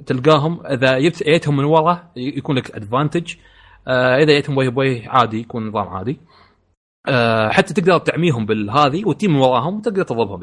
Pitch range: 110-150 Hz